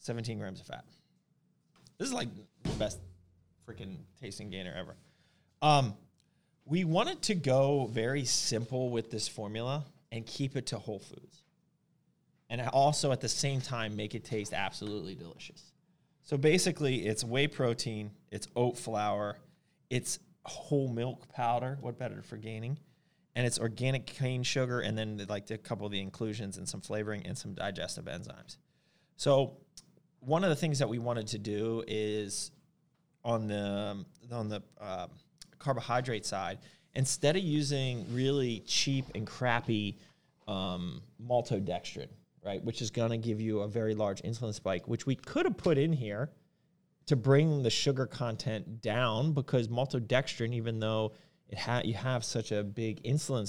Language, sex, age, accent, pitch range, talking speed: English, male, 30-49, American, 110-145 Hz, 160 wpm